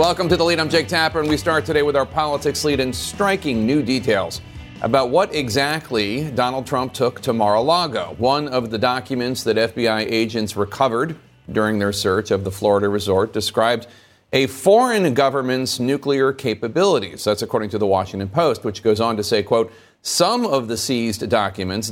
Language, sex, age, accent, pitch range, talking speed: English, male, 40-59, American, 105-140 Hz, 180 wpm